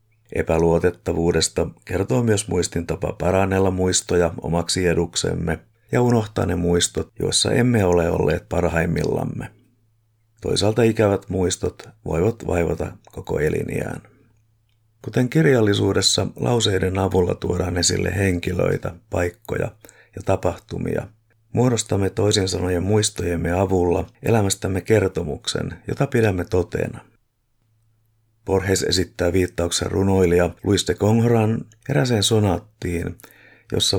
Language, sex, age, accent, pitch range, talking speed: Finnish, male, 50-69, native, 90-110 Hz, 95 wpm